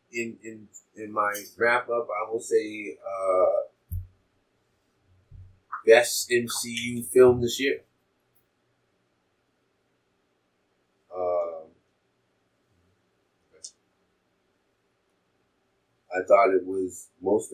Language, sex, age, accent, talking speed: English, male, 30-49, American, 75 wpm